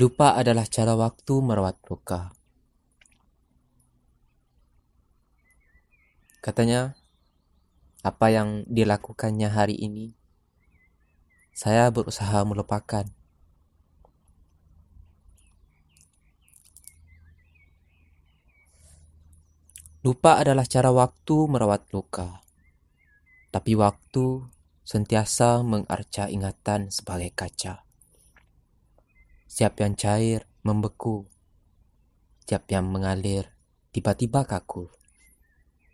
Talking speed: 60 wpm